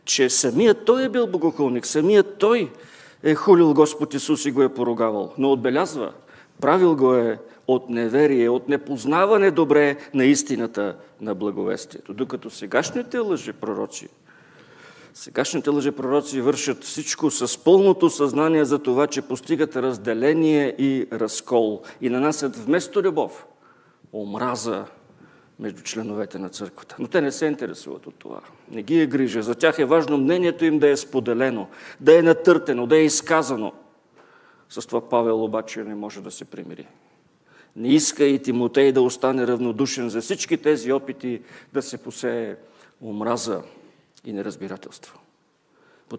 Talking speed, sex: 145 wpm, male